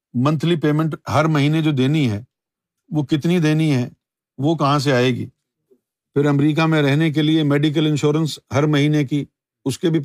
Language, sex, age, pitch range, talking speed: Urdu, male, 50-69, 125-170 Hz, 180 wpm